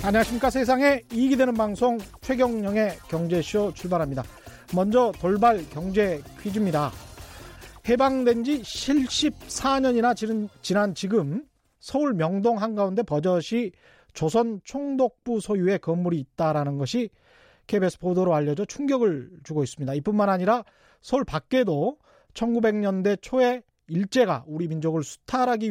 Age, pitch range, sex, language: 40-59, 170-245 Hz, male, Korean